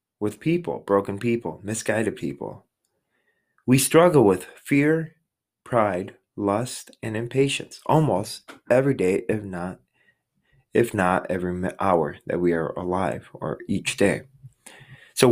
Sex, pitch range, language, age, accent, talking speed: male, 100-130 Hz, English, 30-49, American, 120 wpm